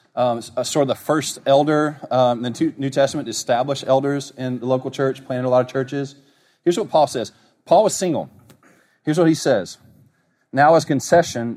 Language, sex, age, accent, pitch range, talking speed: English, male, 40-59, American, 115-140 Hz, 185 wpm